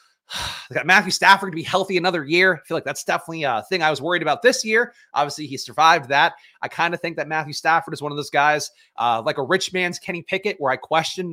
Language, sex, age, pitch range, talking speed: English, male, 30-49, 140-180 Hz, 255 wpm